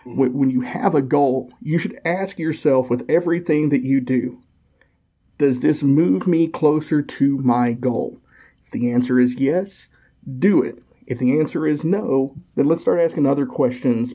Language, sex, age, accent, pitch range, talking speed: English, male, 50-69, American, 125-155 Hz, 170 wpm